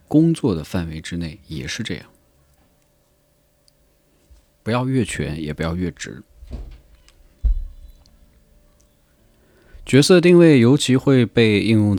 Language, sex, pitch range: Chinese, male, 75-115 Hz